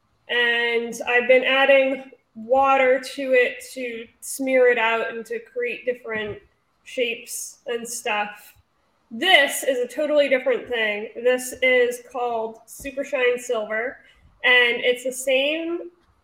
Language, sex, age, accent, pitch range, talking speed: English, female, 20-39, American, 235-280 Hz, 125 wpm